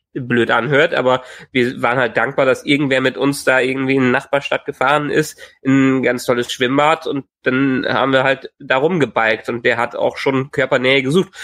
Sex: male